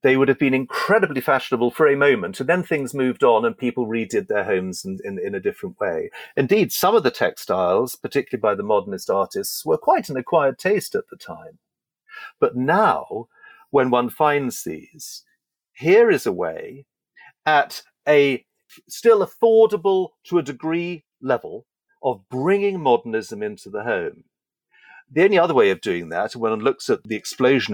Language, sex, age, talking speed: English, male, 40-59, 175 wpm